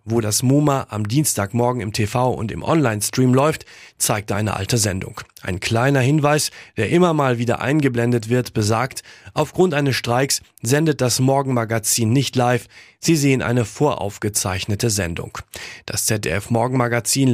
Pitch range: 115-140 Hz